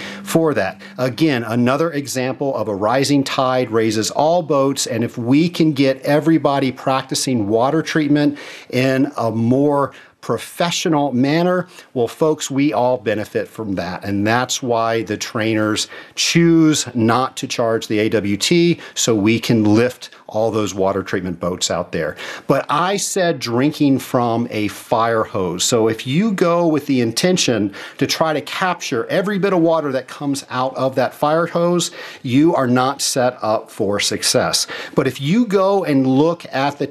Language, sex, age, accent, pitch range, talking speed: English, male, 50-69, American, 115-155 Hz, 165 wpm